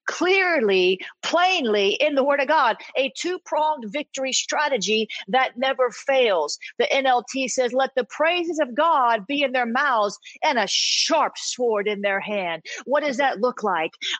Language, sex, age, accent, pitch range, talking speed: English, female, 40-59, American, 240-295 Hz, 165 wpm